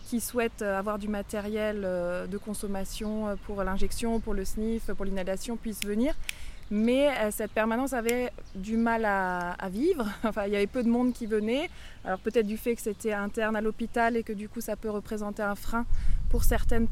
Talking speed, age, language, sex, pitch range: 185 wpm, 20-39, French, female, 205-235 Hz